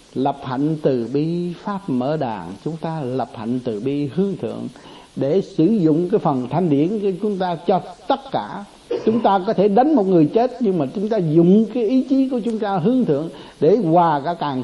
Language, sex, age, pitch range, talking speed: Vietnamese, male, 60-79, 140-195 Hz, 215 wpm